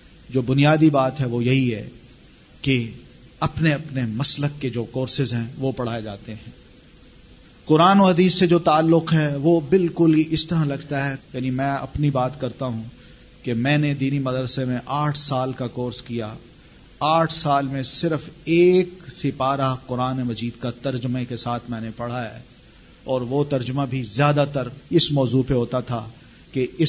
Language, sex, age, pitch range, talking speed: Urdu, male, 40-59, 120-145 Hz, 170 wpm